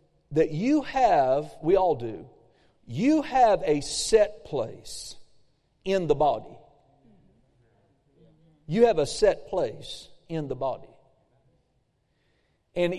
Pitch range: 140-190 Hz